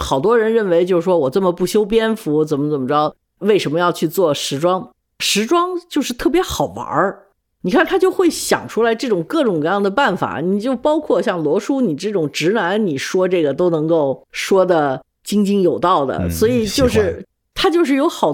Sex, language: female, Chinese